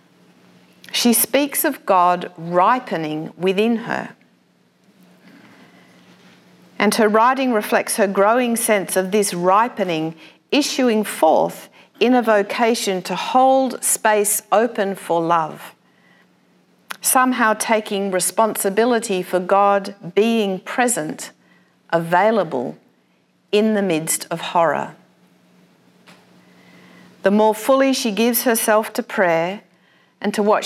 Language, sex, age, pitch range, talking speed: English, female, 50-69, 180-225 Hz, 100 wpm